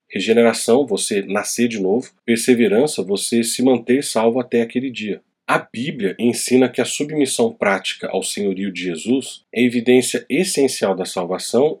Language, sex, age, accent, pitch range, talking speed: Portuguese, male, 40-59, Brazilian, 120-145 Hz, 145 wpm